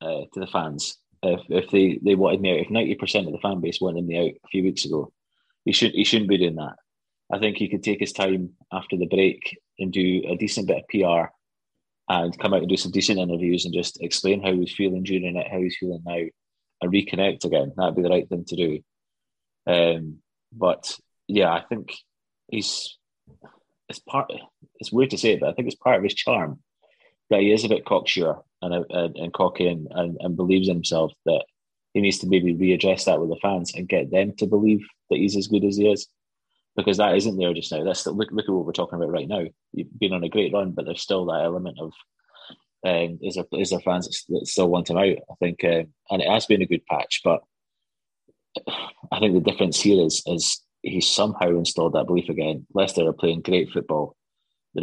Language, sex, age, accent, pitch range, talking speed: English, male, 20-39, British, 85-100 Hz, 225 wpm